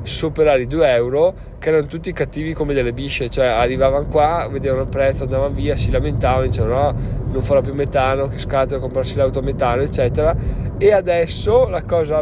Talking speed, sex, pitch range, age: 185 wpm, male, 115-140 Hz, 20-39